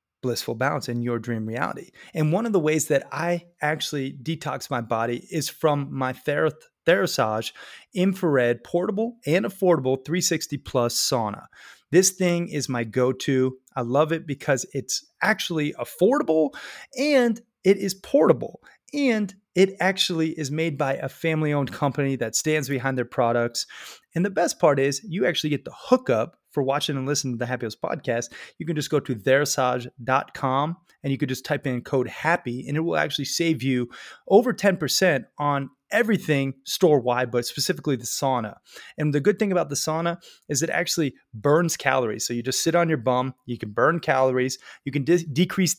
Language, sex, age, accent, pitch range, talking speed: English, male, 30-49, American, 130-175 Hz, 170 wpm